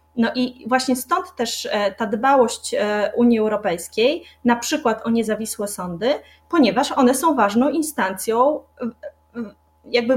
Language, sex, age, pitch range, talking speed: Polish, female, 30-49, 205-255 Hz, 120 wpm